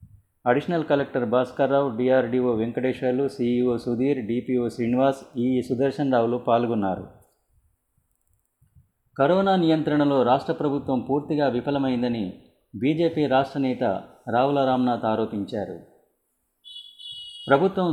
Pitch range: 115-140 Hz